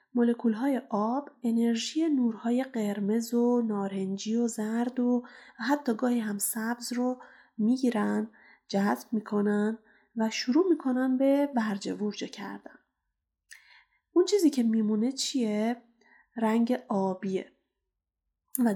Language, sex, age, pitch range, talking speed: Persian, female, 30-49, 210-255 Hz, 105 wpm